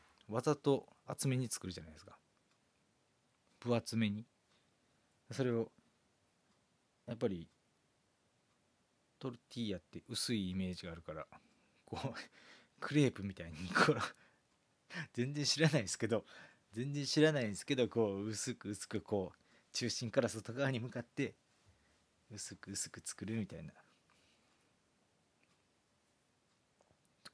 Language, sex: Japanese, male